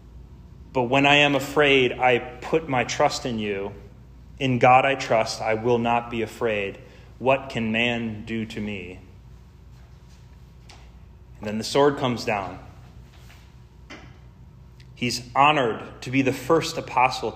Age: 30-49